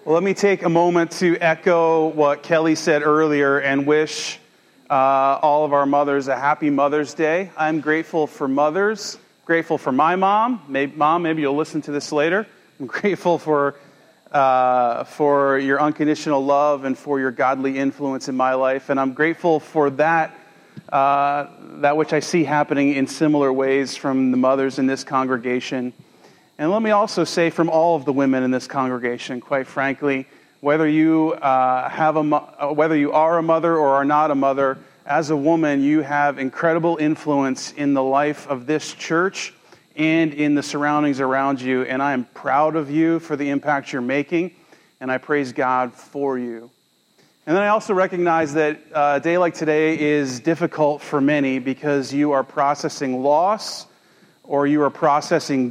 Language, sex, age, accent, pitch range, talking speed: English, male, 40-59, American, 135-160 Hz, 180 wpm